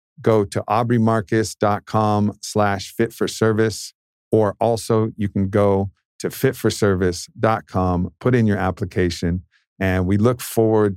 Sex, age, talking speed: male, 50-69, 110 wpm